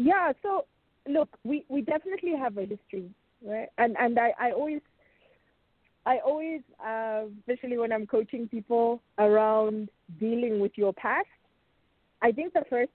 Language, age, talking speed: English, 30-49, 150 wpm